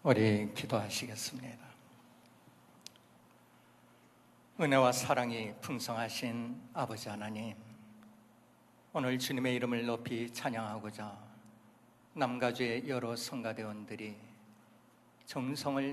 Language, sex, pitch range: Korean, male, 110-145 Hz